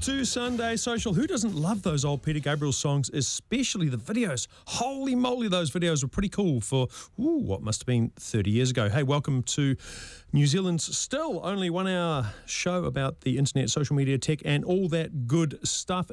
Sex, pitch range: male, 115-180 Hz